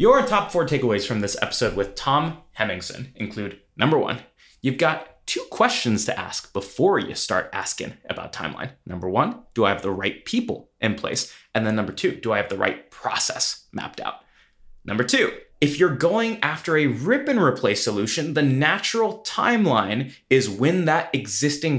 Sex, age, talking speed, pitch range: male, 20-39, 180 wpm, 115-165 Hz